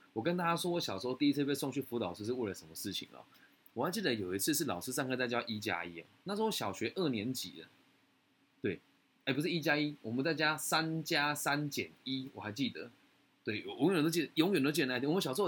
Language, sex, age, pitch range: Chinese, male, 20-39, 110-155 Hz